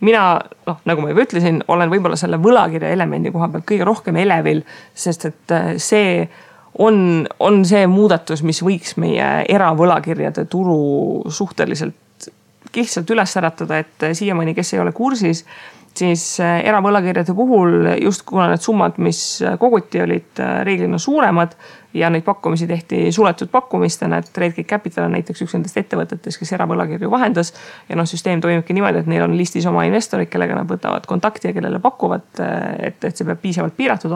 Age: 30-49